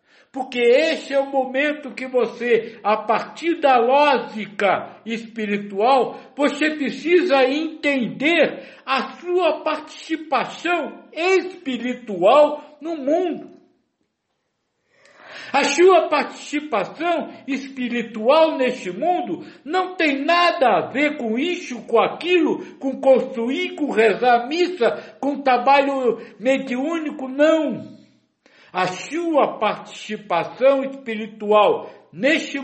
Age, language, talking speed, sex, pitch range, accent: 60-79, Portuguese, 90 wpm, male, 205-295 Hz, Brazilian